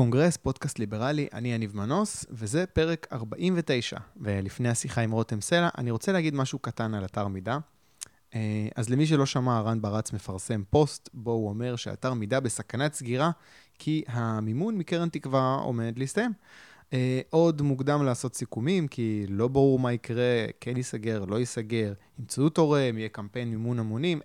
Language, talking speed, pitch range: Hebrew, 155 wpm, 115-150 Hz